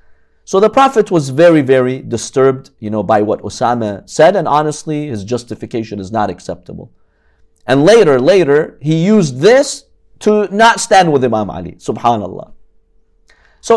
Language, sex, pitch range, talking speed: English, male, 115-170 Hz, 150 wpm